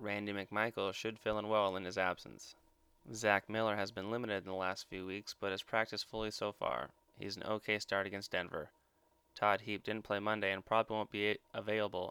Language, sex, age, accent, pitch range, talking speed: English, male, 20-39, American, 95-110 Hz, 205 wpm